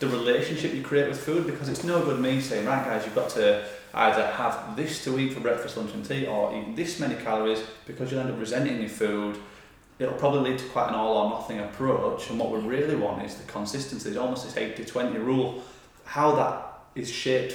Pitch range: 115-145 Hz